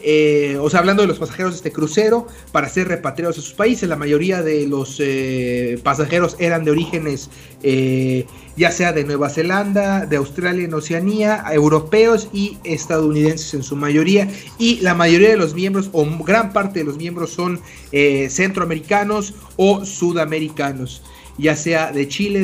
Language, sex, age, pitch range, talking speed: Spanish, male, 40-59, 155-195 Hz, 165 wpm